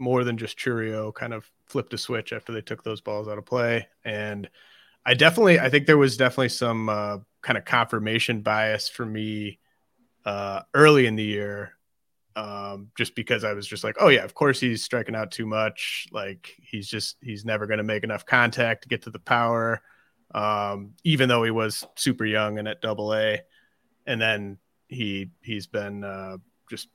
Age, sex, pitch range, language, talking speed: 30-49, male, 105-120 Hz, English, 195 wpm